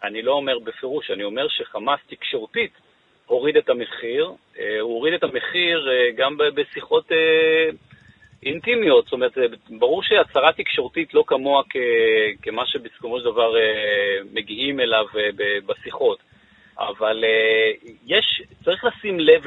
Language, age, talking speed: Hebrew, 40-59, 115 wpm